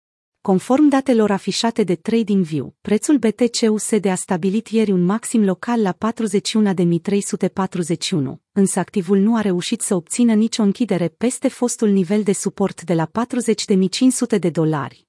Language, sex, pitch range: Romanian, female, 185-225 Hz